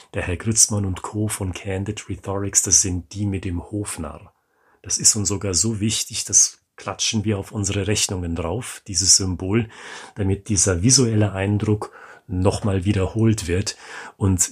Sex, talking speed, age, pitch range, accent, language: male, 155 wpm, 40-59, 95-110 Hz, German, German